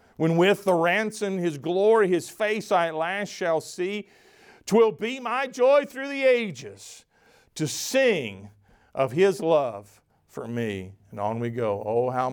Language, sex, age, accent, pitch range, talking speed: English, male, 50-69, American, 115-185 Hz, 160 wpm